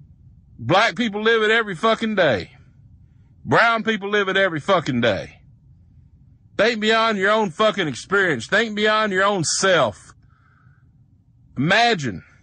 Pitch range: 130-185 Hz